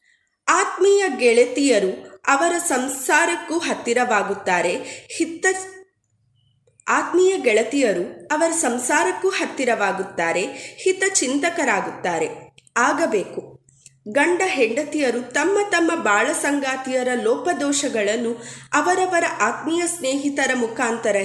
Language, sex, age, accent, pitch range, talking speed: Kannada, female, 20-39, native, 235-340 Hz, 60 wpm